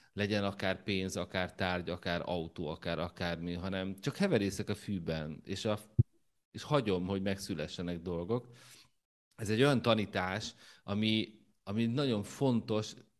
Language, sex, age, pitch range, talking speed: Hungarian, male, 30-49, 90-110 Hz, 135 wpm